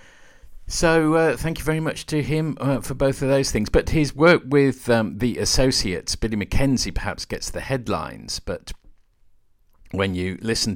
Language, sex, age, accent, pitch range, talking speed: English, male, 50-69, British, 85-110 Hz, 175 wpm